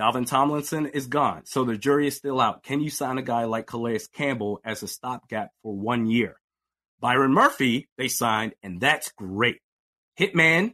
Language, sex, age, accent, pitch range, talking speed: English, male, 30-49, American, 120-150 Hz, 180 wpm